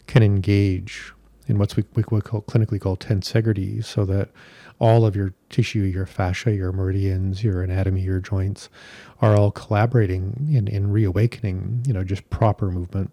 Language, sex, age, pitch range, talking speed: English, male, 40-59, 95-110 Hz, 160 wpm